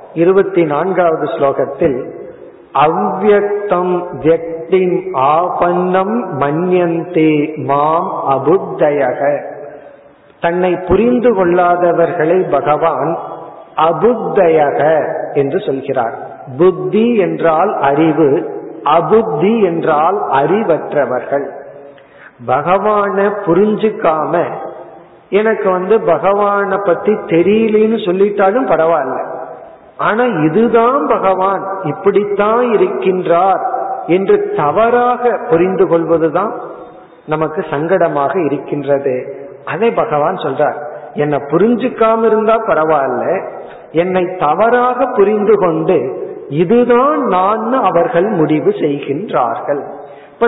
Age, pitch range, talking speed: 50-69, 165-225 Hz, 55 wpm